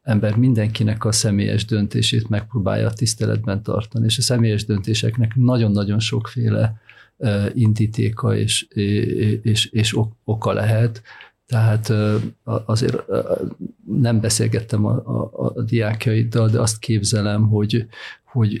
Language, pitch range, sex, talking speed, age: Hungarian, 105-115 Hz, male, 110 wpm, 50-69